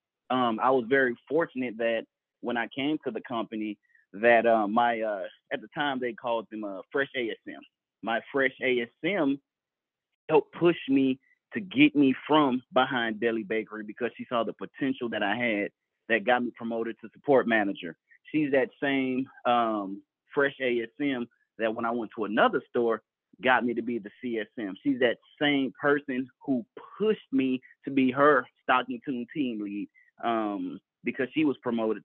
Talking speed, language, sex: 170 wpm, English, male